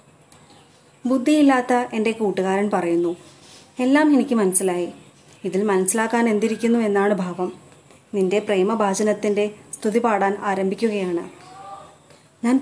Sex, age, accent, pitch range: female, 30-49, native, 185-235 Hz